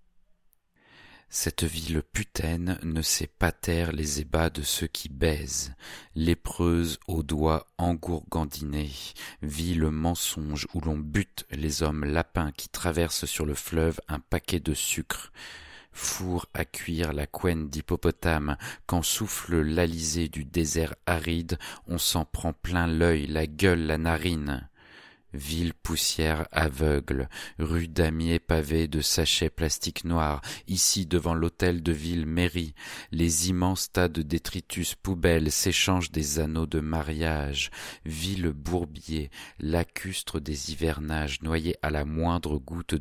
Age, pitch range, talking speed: 40-59, 75-85 Hz, 130 wpm